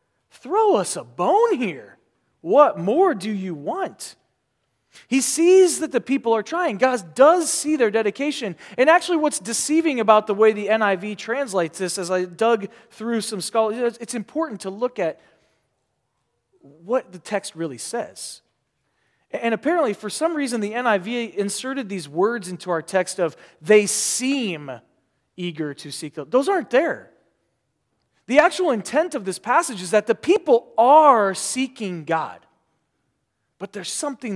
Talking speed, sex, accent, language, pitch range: 150 wpm, male, American, English, 165-255 Hz